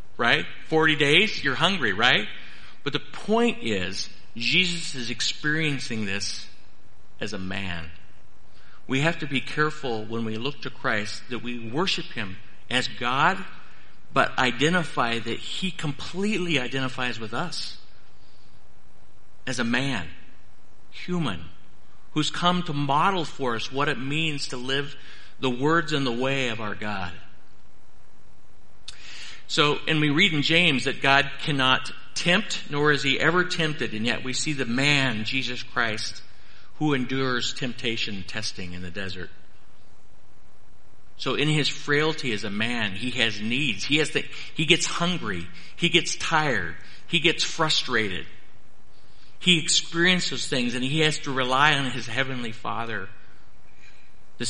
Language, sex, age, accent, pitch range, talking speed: English, male, 50-69, American, 110-155 Hz, 140 wpm